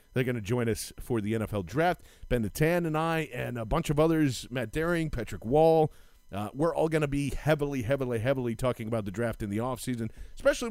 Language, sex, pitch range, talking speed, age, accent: English, male, 115-155 Hz, 220 wpm, 40-59, American